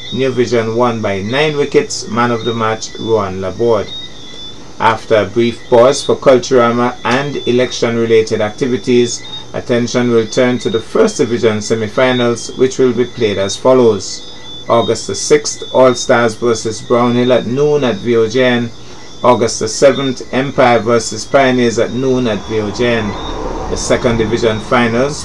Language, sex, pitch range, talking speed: English, male, 110-125 Hz, 140 wpm